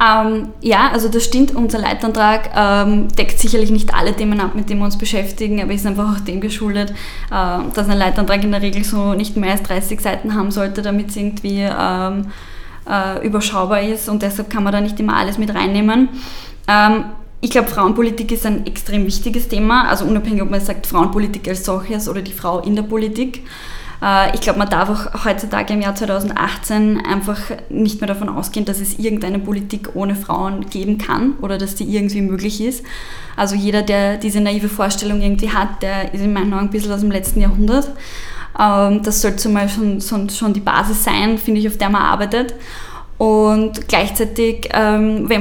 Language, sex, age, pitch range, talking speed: German, female, 20-39, 200-220 Hz, 190 wpm